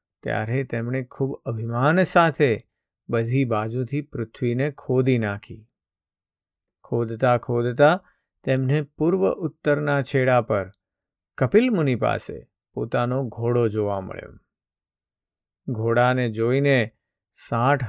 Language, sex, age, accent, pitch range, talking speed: Gujarati, male, 50-69, native, 110-140 Hz, 75 wpm